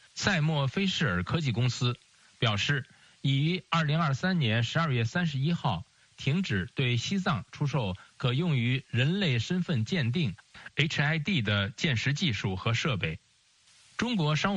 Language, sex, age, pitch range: Chinese, male, 50-69, 115-160 Hz